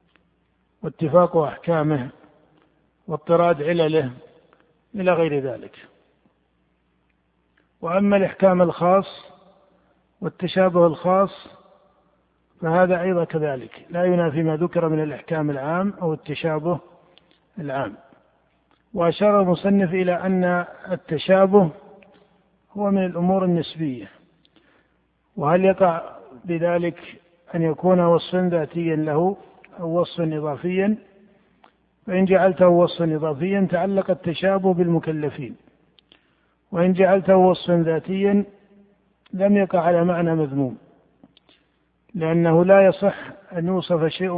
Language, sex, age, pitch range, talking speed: Arabic, male, 50-69, 160-185 Hz, 90 wpm